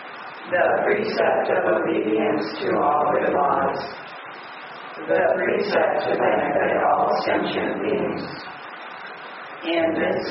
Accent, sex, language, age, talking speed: American, female, English, 40-59, 100 wpm